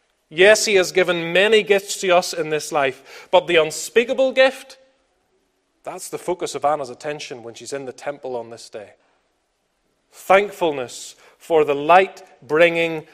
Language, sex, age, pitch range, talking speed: English, male, 30-49, 145-200 Hz, 150 wpm